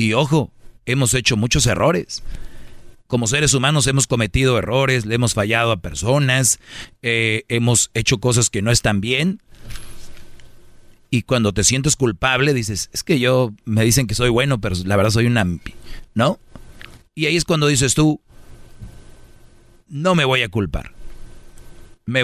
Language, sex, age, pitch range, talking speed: Spanish, male, 40-59, 110-135 Hz, 155 wpm